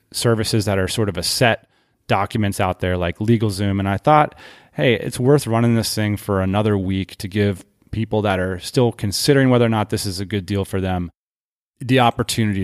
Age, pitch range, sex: 30-49, 95-120 Hz, male